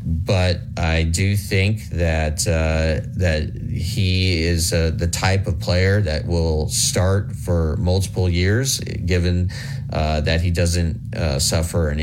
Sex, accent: male, American